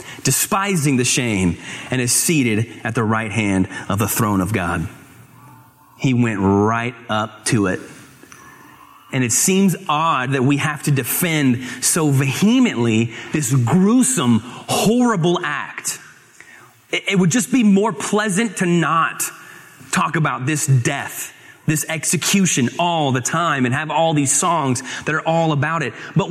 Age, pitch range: 30-49, 125-185 Hz